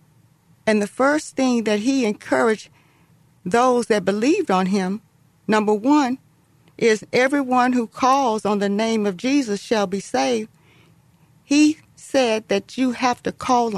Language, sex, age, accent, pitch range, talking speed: English, female, 40-59, American, 160-235 Hz, 145 wpm